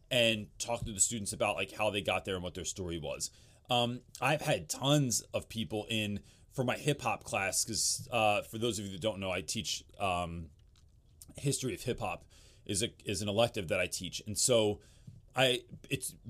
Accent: American